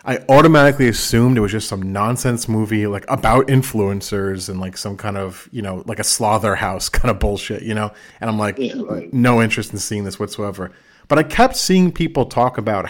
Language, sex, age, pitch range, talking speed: English, male, 30-49, 100-135 Hz, 205 wpm